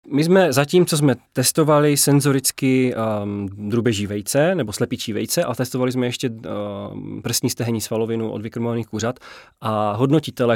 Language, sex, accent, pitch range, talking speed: Czech, male, native, 115-135 Hz, 150 wpm